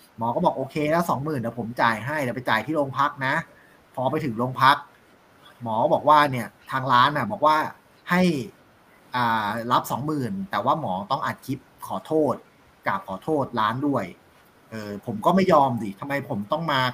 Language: Thai